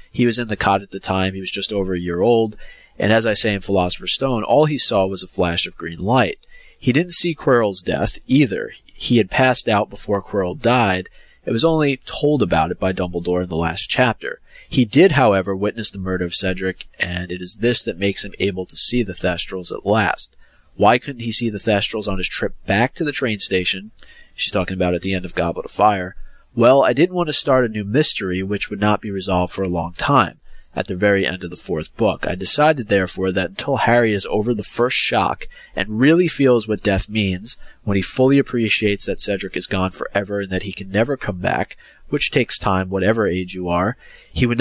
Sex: male